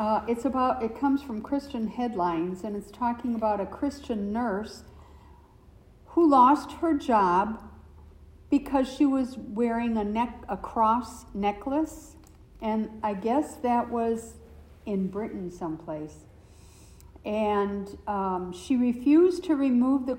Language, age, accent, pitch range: English, 60-79, American, 200-255 Hz